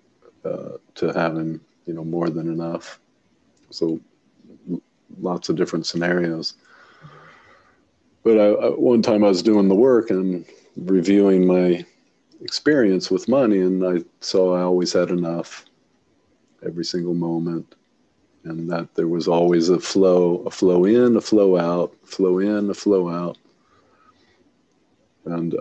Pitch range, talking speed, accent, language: 85-95 Hz, 125 wpm, American, English